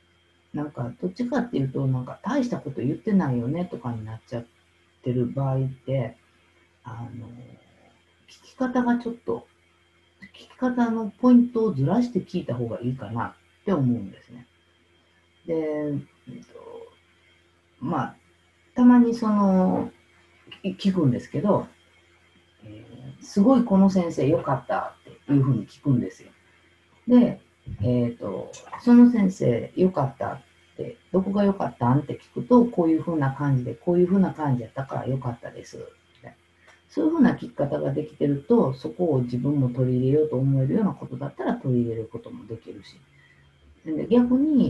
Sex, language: female, Japanese